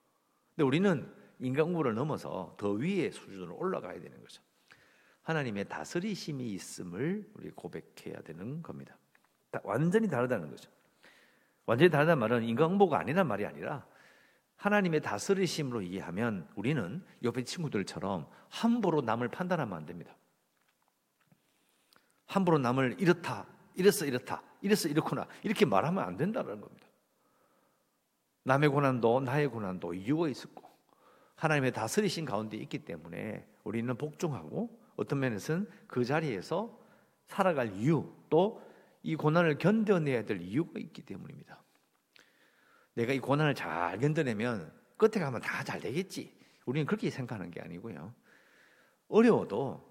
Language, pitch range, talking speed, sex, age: English, 130-195 Hz, 110 wpm, male, 50-69